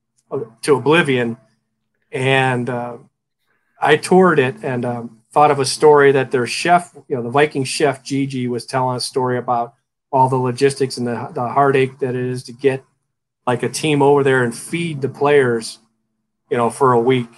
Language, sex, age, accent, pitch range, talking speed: English, male, 40-59, American, 120-140 Hz, 185 wpm